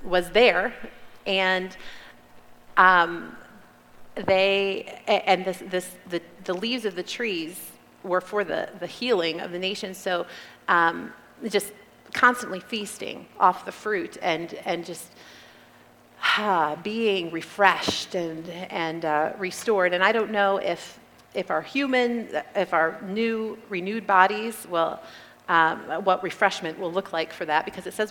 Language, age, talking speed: English, 30-49, 140 wpm